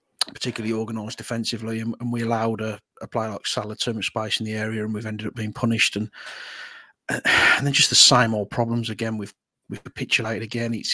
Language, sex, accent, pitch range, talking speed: English, male, British, 110-125 Hz, 210 wpm